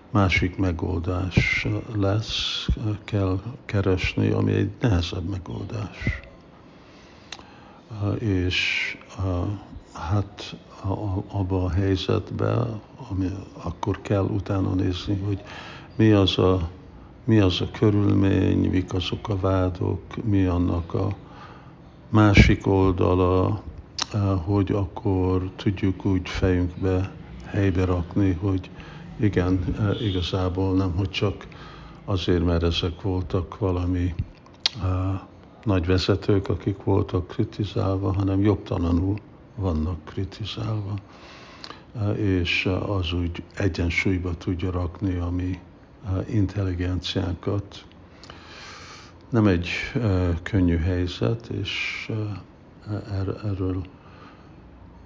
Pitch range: 90-105 Hz